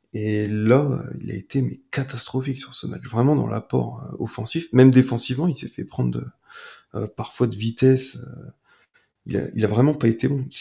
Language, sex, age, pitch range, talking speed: French, male, 30-49, 105-125 Hz, 205 wpm